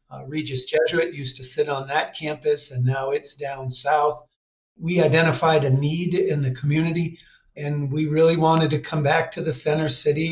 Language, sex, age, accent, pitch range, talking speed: English, male, 50-69, American, 135-160 Hz, 185 wpm